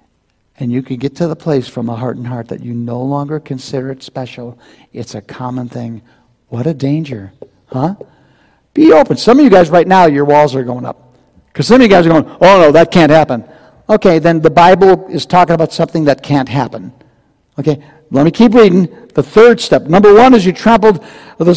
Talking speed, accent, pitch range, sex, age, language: 215 wpm, American, 135-190 Hz, male, 60-79, English